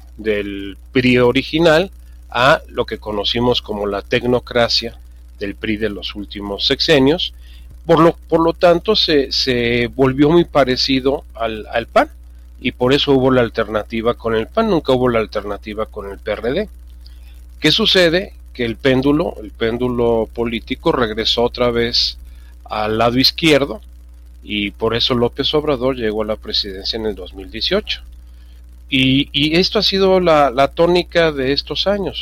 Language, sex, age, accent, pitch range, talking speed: Spanish, male, 40-59, Mexican, 100-140 Hz, 155 wpm